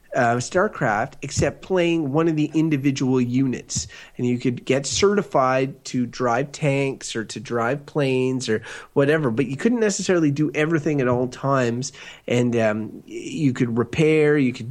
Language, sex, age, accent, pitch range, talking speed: English, male, 30-49, American, 125-160 Hz, 160 wpm